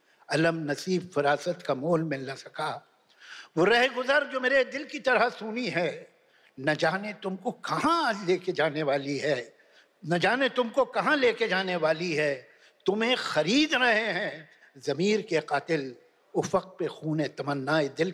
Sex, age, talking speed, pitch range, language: male, 60-79, 155 wpm, 155-230 Hz, Hindi